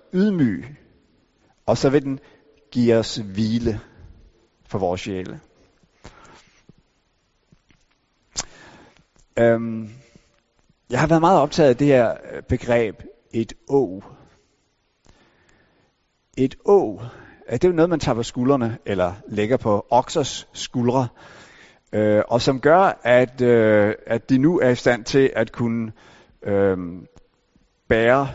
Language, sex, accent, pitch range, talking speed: Danish, male, native, 110-140 Hz, 120 wpm